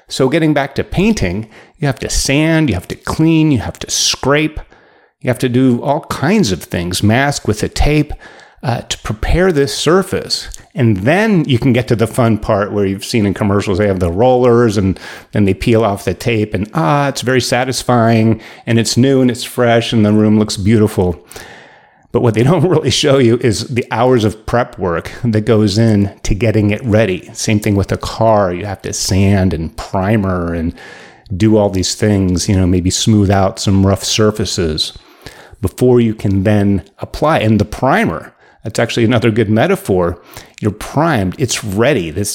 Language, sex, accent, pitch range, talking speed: English, male, American, 100-125 Hz, 195 wpm